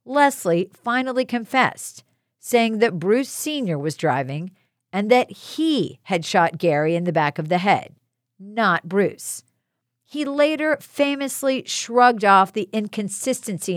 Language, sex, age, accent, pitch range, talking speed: English, female, 50-69, American, 155-255 Hz, 130 wpm